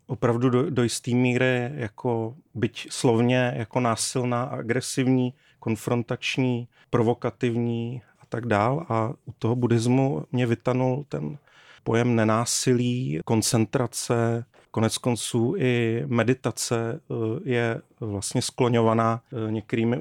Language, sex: Czech, male